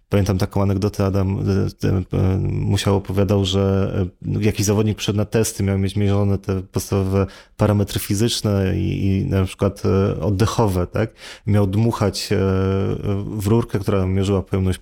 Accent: native